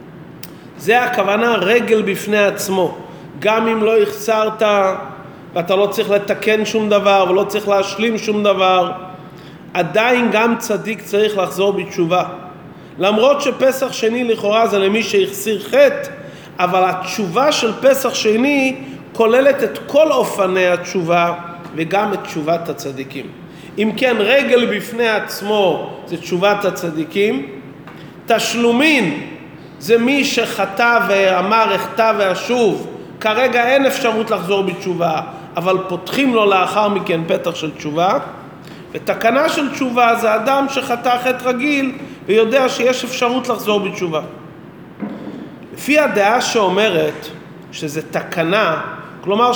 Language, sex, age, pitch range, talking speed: Hebrew, male, 40-59, 185-240 Hz, 115 wpm